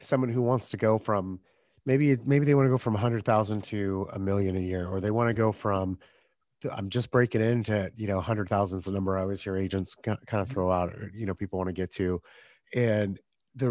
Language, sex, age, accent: English, male, 30-49, American